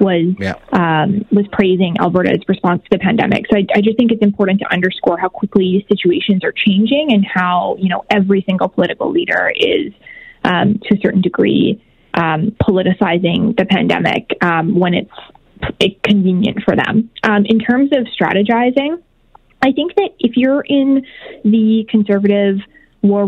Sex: female